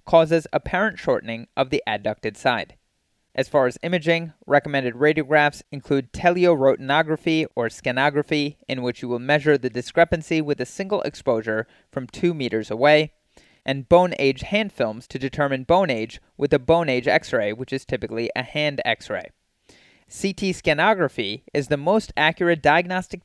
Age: 30-49